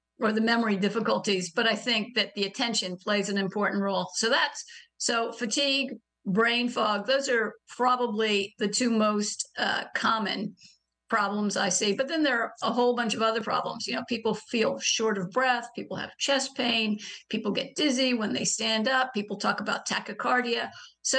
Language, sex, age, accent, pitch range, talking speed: English, female, 50-69, American, 210-255 Hz, 180 wpm